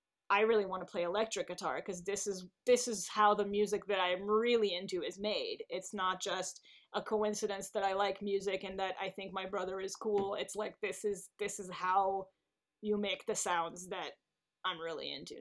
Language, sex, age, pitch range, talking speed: English, female, 30-49, 190-235 Hz, 205 wpm